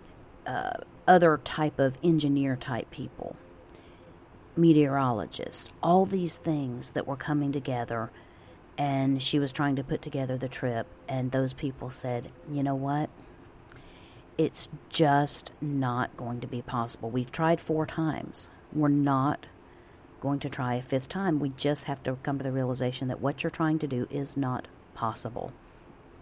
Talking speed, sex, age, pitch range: 150 wpm, female, 50-69, 125-150 Hz